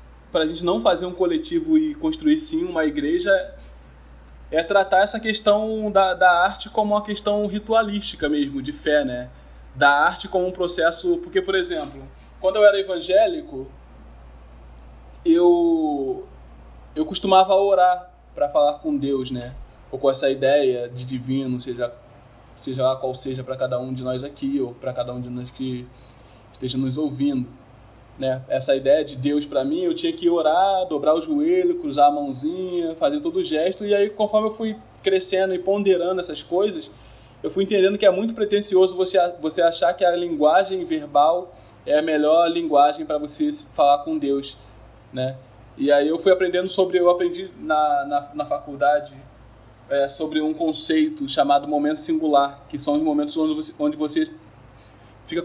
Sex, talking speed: male, 170 wpm